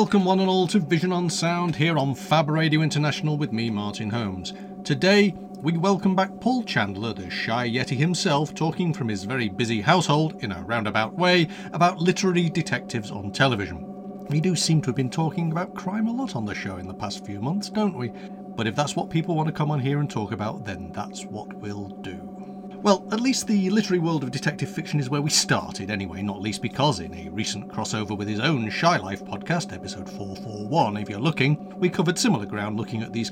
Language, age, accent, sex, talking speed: English, 40-59, British, male, 215 wpm